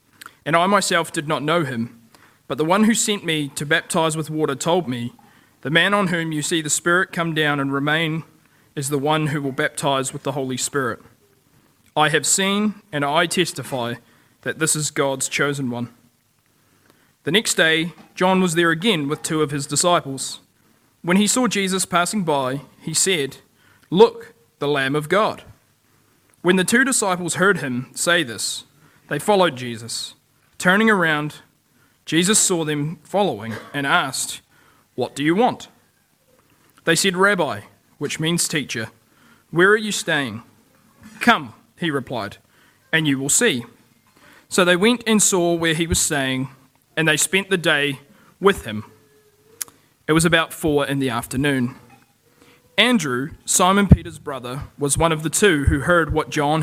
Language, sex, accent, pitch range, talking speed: English, male, Australian, 135-175 Hz, 165 wpm